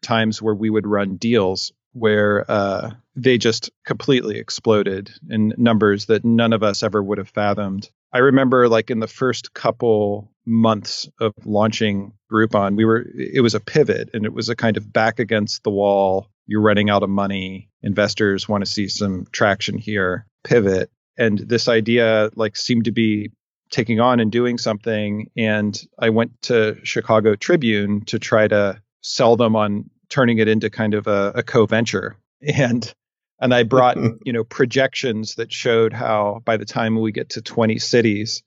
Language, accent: English, American